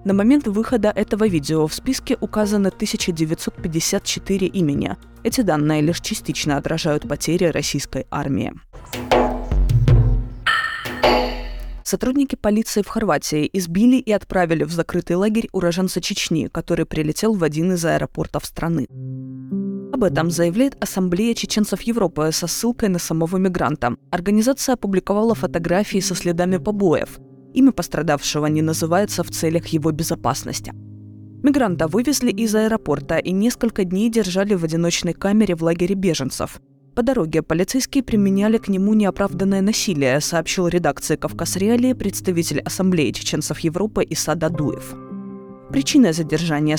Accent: native